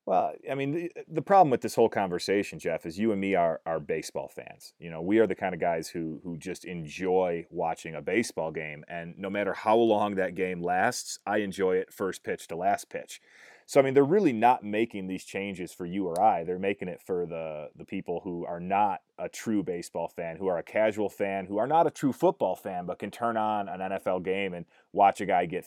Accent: American